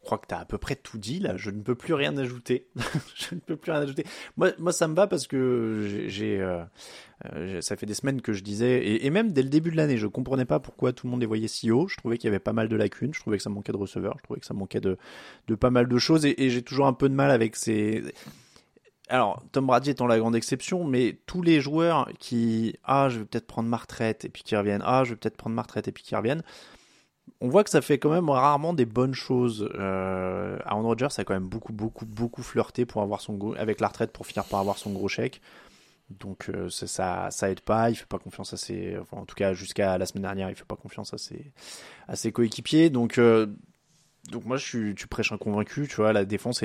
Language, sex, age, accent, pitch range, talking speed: French, male, 20-39, French, 105-135 Hz, 275 wpm